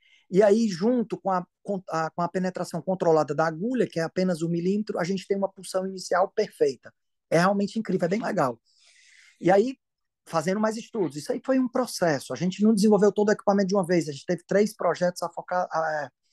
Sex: male